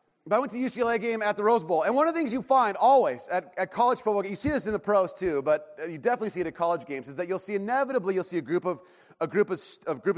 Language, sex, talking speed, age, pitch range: English, male, 310 wpm, 30-49, 165-240 Hz